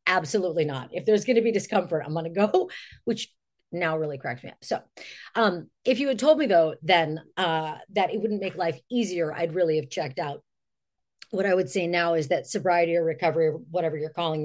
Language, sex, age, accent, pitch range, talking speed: English, female, 40-59, American, 155-190 Hz, 220 wpm